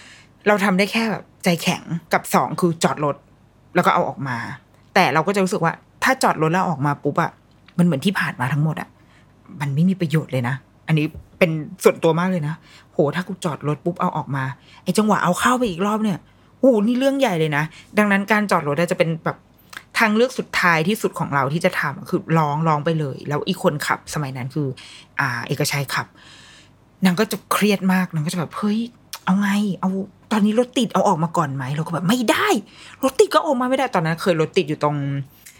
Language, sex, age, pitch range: Thai, female, 20-39, 155-210 Hz